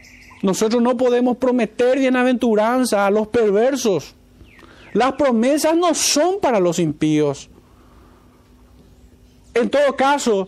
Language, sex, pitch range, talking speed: Spanish, male, 205-265 Hz, 105 wpm